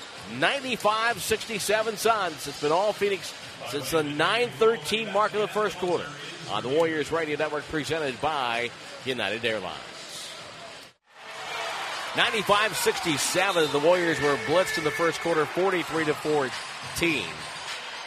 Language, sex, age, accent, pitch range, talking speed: English, male, 50-69, American, 145-185 Hz, 115 wpm